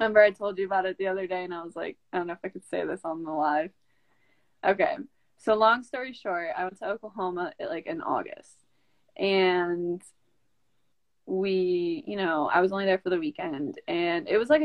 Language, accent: English, American